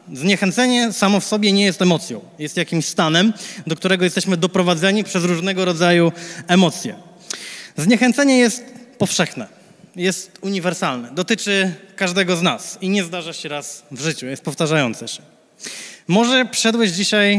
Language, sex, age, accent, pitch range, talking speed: Polish, male, 20-39, native, 175-215 Hz, 135 wpm